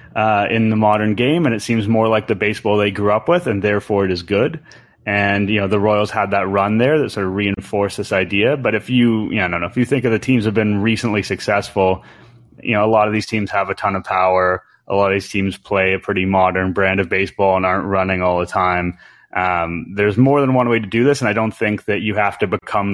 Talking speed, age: 265 wpm, 20-39